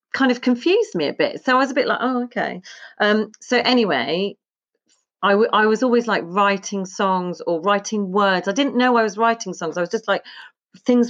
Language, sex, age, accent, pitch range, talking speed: English, female, 40-59, British, 175-230 Hz, 215 wpm